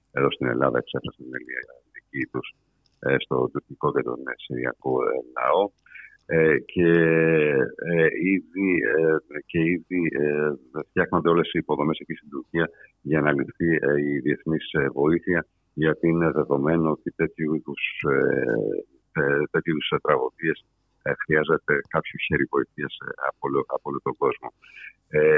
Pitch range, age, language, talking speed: 80-90 Hz, 50-69, Greek, 110 wpm